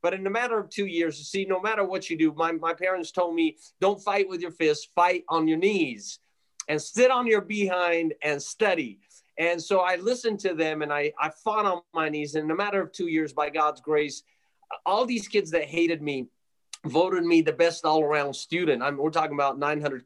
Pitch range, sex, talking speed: 160-210 Hz, male, 225 wpm